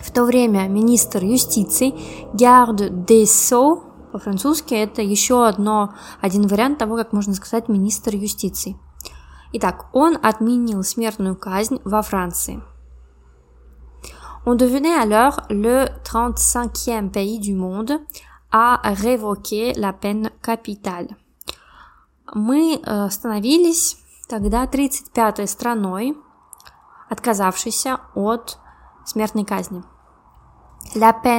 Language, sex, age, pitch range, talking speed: Russian, female, 20-39, 200-235 Hz, 75 wpm